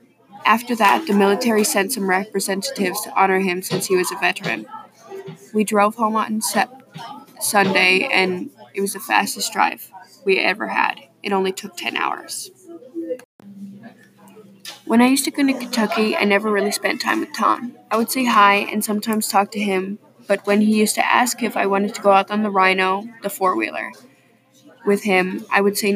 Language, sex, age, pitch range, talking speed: English, female, 20-39, 195-220 Hz, 185 wpm